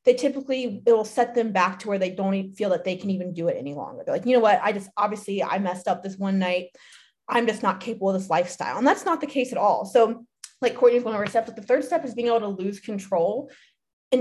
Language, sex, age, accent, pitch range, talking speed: English, female, 20-39, American, 195-245 Hz, 275 wpm